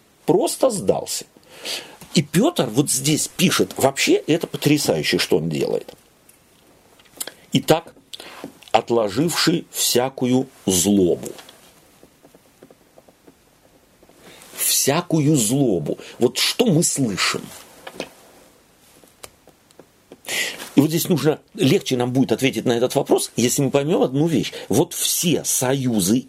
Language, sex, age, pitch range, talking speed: Russian, male, 50-69, 125-180 Hz, 95 wpm